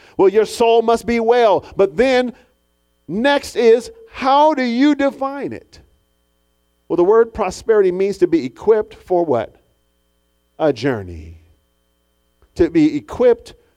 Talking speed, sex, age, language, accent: 130 wpm, male, 40-59, English, American